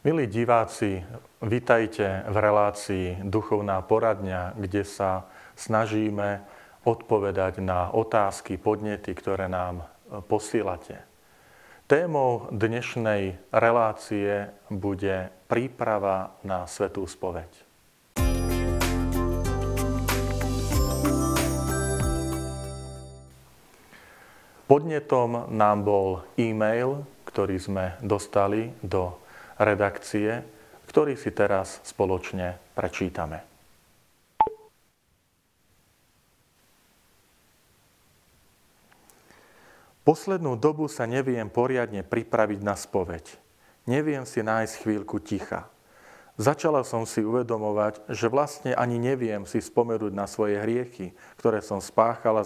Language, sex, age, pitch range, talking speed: Slovak, male, 40-59, 95-115 Hz, 80 wpm